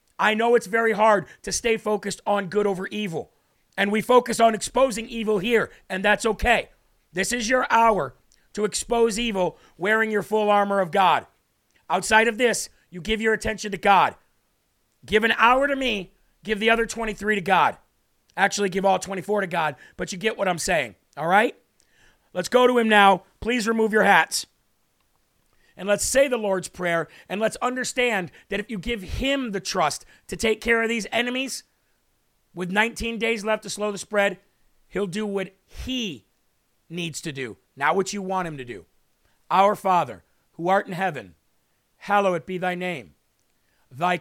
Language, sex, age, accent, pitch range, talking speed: English, male, 40-59, American, 185-220 Hz, 180 wpm